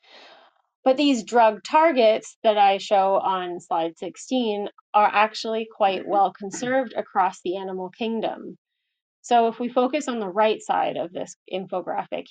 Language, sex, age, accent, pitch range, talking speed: English, female, 30-49, American, 190-235 Hz, 145 wpm